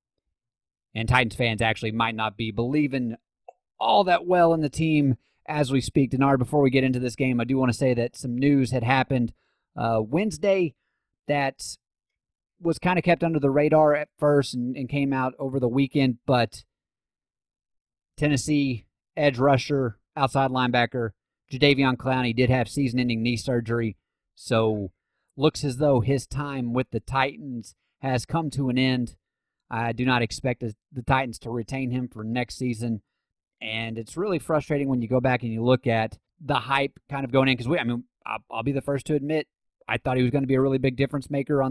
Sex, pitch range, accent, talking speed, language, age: male, 120-140 Hz, American, 195 wpm, English, 30-49